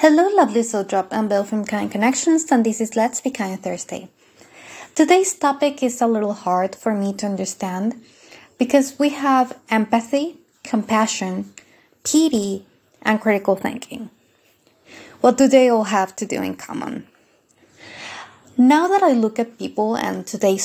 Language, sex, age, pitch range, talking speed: English, female, 20-39, 210-270 Hz, 150 wpm